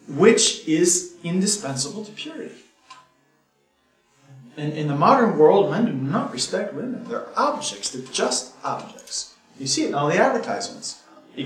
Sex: male